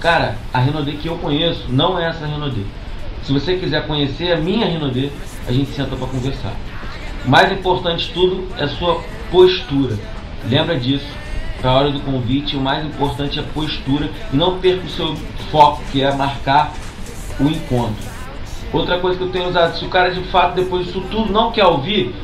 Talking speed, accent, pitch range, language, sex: 185 wpm, Brazilian, 135-175 Hz, Portuguese, male